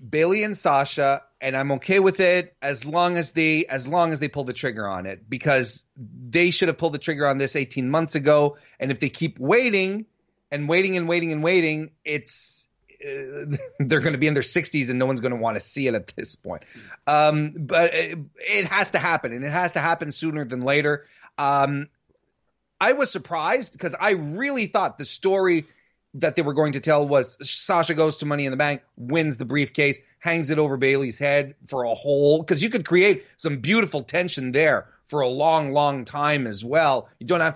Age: 30-49